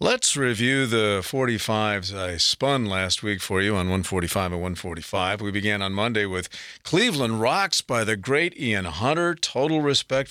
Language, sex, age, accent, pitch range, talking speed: English, male, 50-69, American, 105-135 Hz, 165 wpm